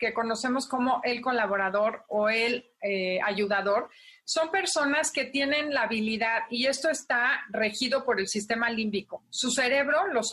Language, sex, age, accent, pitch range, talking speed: Spanish, female, 40-59, Mexican, 220-275 Hz, 150 wpm